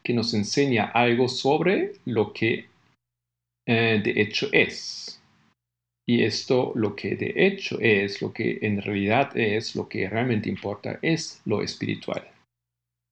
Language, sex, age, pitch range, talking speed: Spanish, male, 50-69, 105-125 Hz, 135 wpm